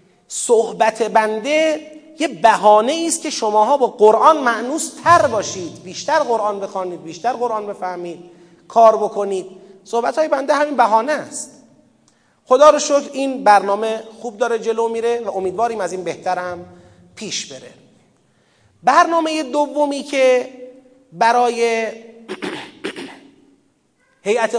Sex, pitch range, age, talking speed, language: male, 195-255 Hz, 30-49, 110 wpm, Persian